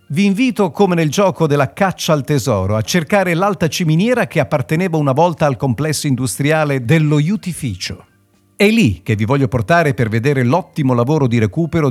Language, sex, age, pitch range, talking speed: Italian, male, 50-69, 115-160 Hz, 170 wpm